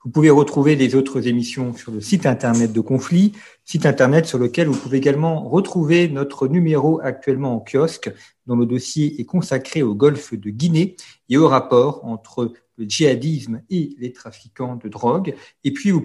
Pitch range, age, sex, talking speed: 120-165 Hz, 50-69, male, 180 wpm